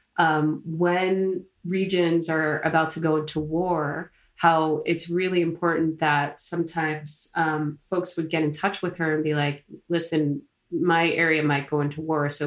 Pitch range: 155-180 Hz